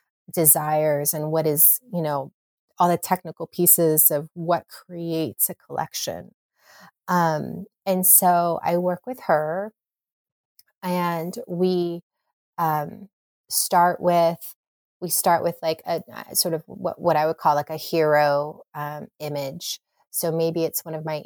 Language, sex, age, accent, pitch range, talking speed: English, female, 30-49, American, 150-180 Hz, 145 wpm